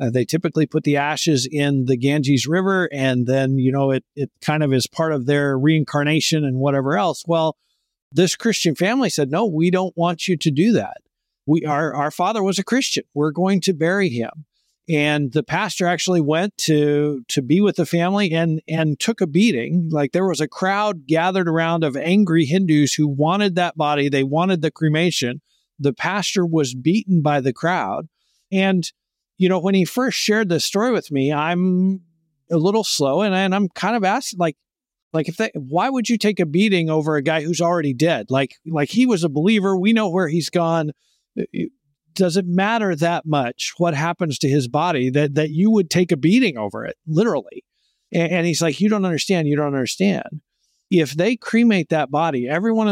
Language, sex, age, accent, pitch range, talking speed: English, male, 50-69, American, 145-185 Hz, 200 wpm